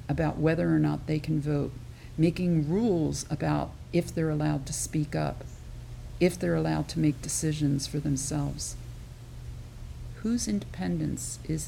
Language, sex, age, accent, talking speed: English, female, 50-69, American, 140 wpm